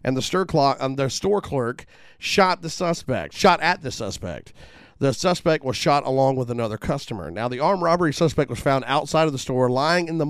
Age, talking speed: 40-59, 190 wpm